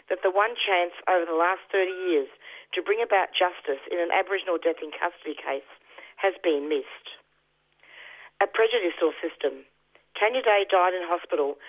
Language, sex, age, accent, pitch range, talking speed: English, female, 40-59, Australian, 170-205 Hz, 160 wpm